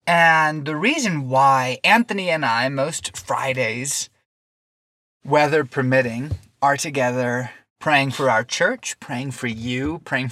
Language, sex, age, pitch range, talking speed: English, male, 20-39, 125-145 Hz, 120 wpm